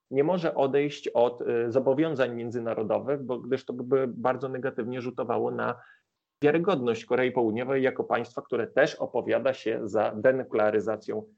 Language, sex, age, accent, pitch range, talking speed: Polish, male, 30-49, native, 125-150 Hz, 130 wpm